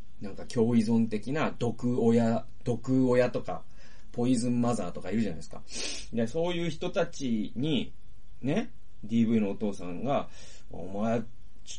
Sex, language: male, Japanese